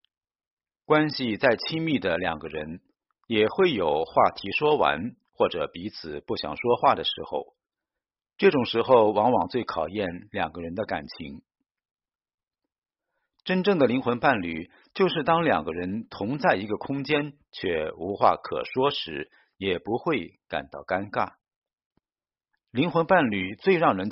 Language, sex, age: Chinese, male, 50-69